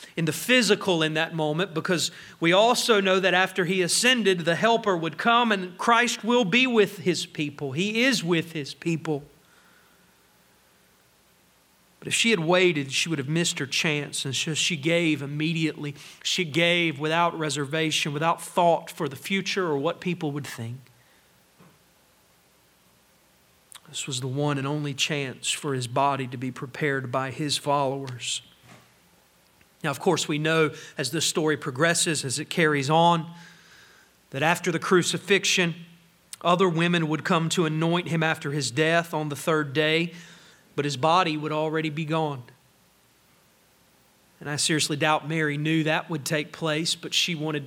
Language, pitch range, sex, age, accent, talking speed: English, 150-180 Hz, male, 40-59, American, 160 wpm